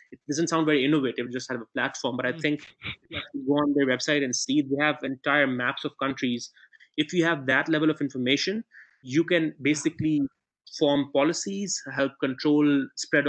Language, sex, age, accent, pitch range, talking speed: English, male, 20-39, Indian, 130-150 Hz, 185 wpm